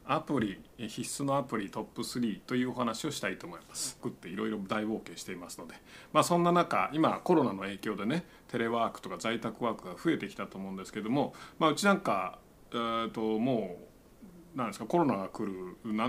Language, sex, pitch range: Japanese, male, 110-150 Hz